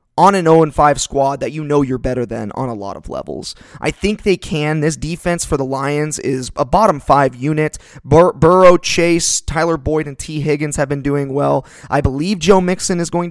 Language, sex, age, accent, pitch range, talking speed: English, male, 20-39, American, 130-160 Hz, 205 wpm